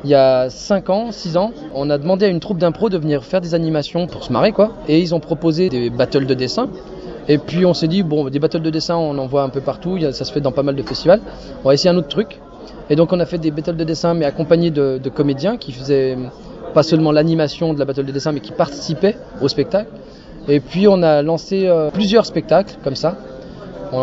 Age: 20-39